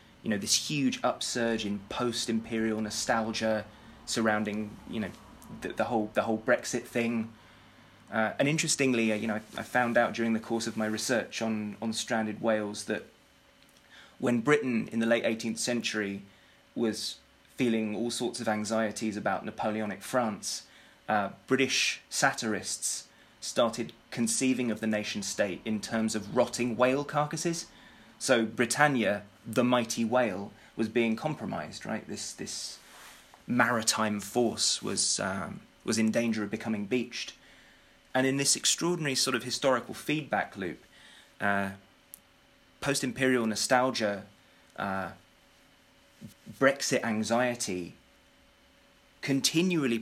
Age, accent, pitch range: 20-39, British, 110-125 Hz